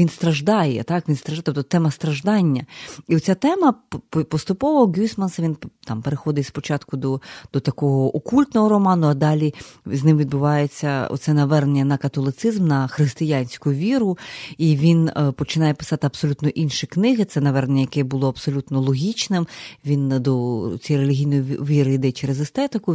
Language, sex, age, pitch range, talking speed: Ukrainian, female, 30-49, 140-170 Hz, 145 wpm